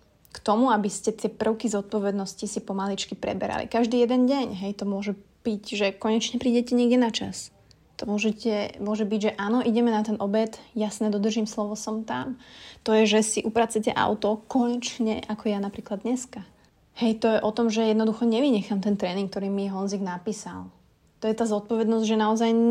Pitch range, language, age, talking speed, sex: 200-235 Hz, Slovak, 30-49, 180 wpm, female